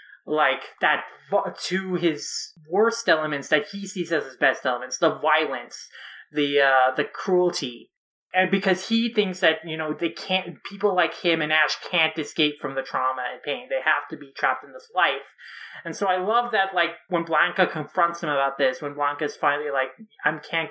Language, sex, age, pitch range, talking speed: English, male, 20-39, 140-180 Hz, 190 wpm